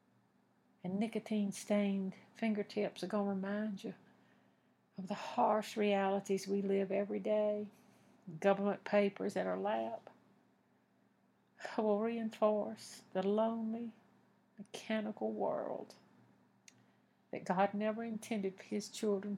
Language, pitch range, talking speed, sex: English, 175-215 Hz, 105 wpm, female